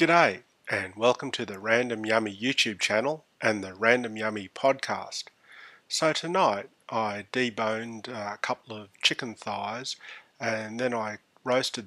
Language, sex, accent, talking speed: English, male, Australian, 135 wpm